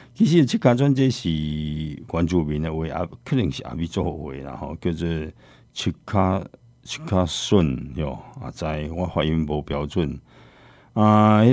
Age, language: 50-69, Chinese